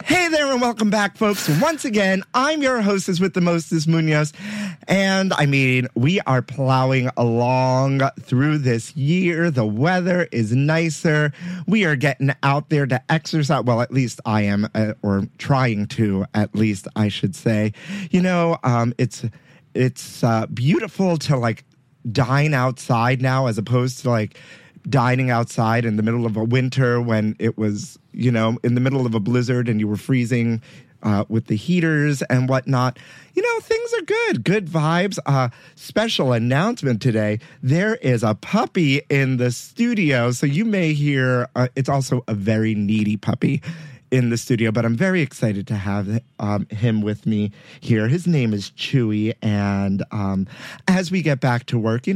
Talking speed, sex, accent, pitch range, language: 175 wpm, male, American, 115-165 Hz, English